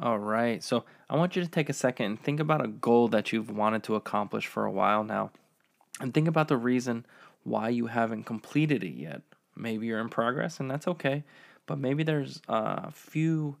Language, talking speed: English, 205 wpm